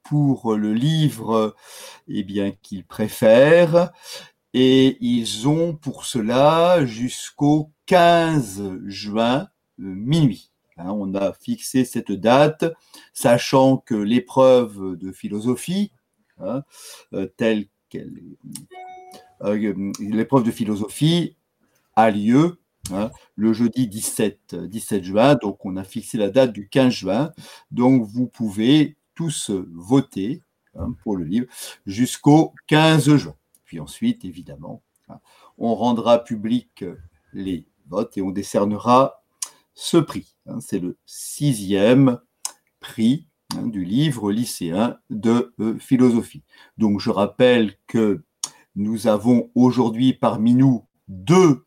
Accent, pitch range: French, 105-145 Hz